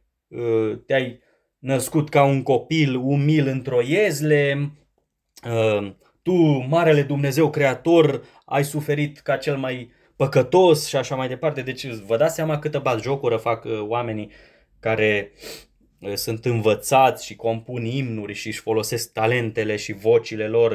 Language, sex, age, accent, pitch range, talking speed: Romanian, male, 20-39, native, 115-155 Hz, 125 wpm